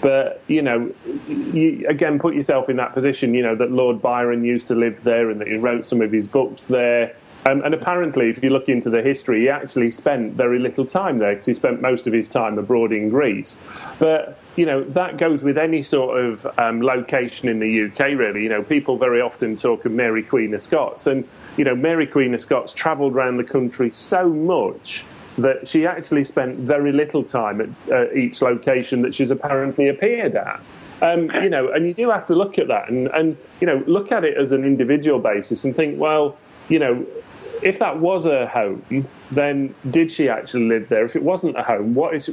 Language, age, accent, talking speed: English, 30-49, British, 215 wpm